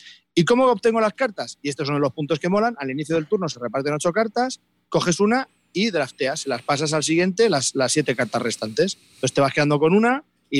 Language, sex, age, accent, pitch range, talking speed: Spanish, male, 30-49, Spanish, 130-180 Hz, 225 wpm